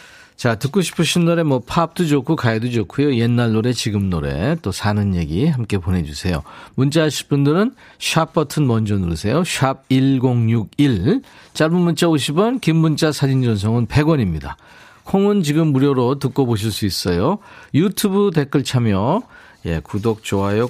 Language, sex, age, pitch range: Korean, male, 40-59, 100-150 Hz